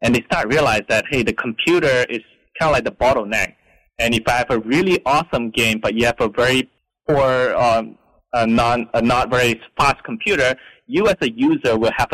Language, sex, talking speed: English, male, 205 wpm